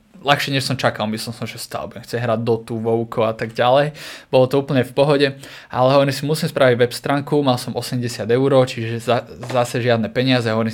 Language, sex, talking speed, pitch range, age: Slovak, male, 205 wpm, 120-135 Hz, 20-39